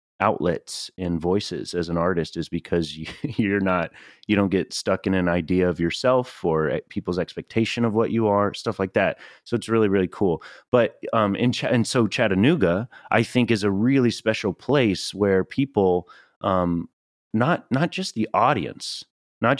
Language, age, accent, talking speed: English, 30-49, American, 180 wpm